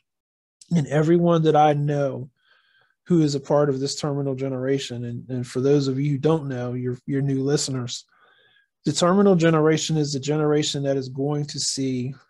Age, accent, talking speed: 20-39, American, 180 wpm